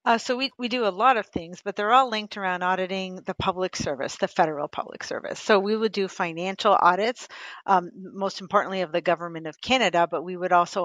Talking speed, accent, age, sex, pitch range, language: 220 wpm, American, 40-59, female, 180-215 Hz, English